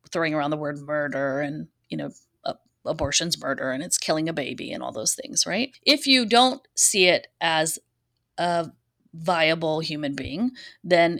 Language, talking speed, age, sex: English, 170 wpm, 30-49, female